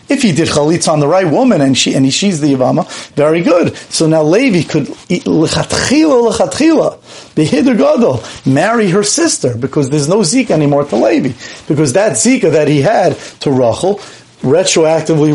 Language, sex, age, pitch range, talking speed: English, male, 40-59, 145-215 Hz, 170 wpm